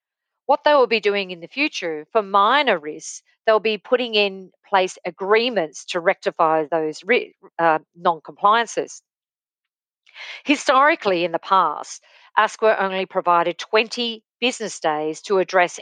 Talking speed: 135 wpm